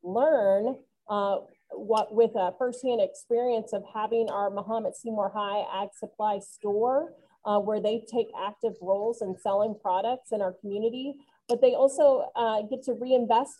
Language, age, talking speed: German, 30-49, 155 wpm